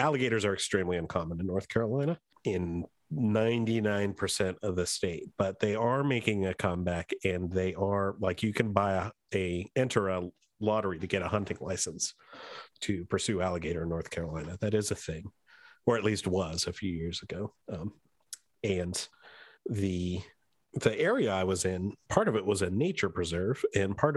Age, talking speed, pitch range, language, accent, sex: 40-59, 175 wpm, 90-110 Hz, English, American, male